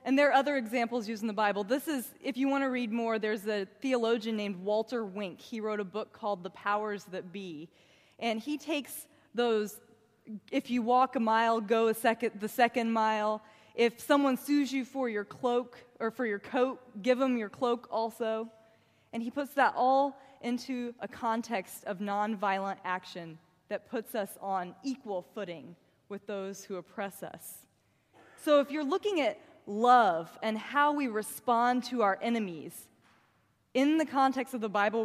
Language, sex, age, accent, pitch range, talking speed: English, female, 20-39, American, 205-255 Hz, 180 wpm